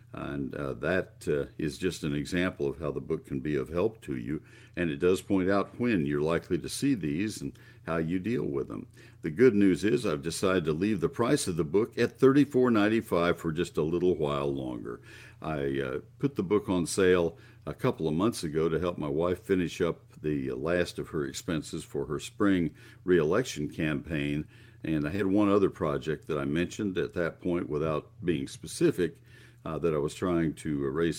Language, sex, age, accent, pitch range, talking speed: English, male, 60-79, American, 80-115 Hz, 205 wpm